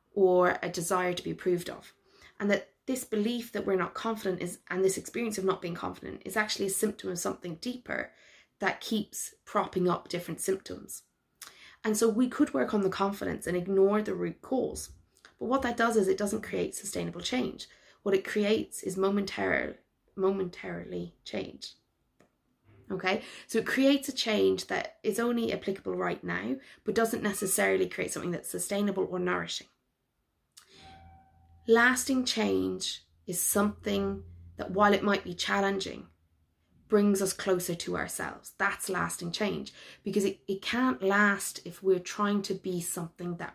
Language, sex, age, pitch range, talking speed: English, female, 20-39, 175-215 Hz, 160 wpm